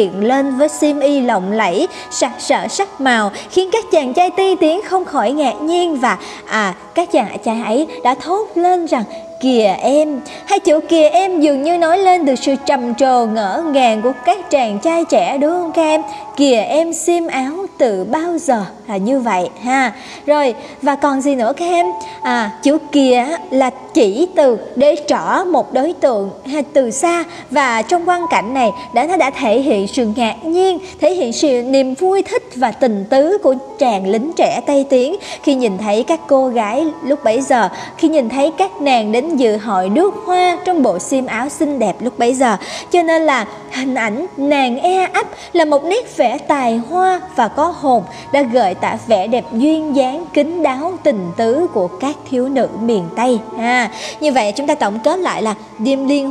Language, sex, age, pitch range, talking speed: Vietnamese, male, 20-39, 245-330 Hz, 200 wpm